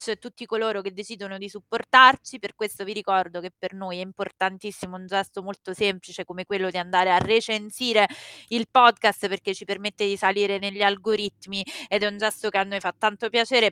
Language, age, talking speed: Italian, 20-39, 195 wpm